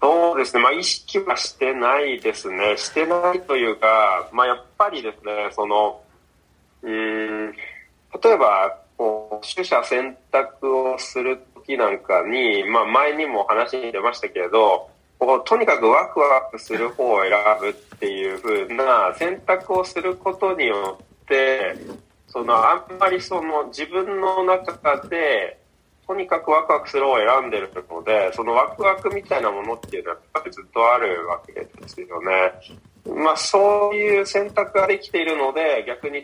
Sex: male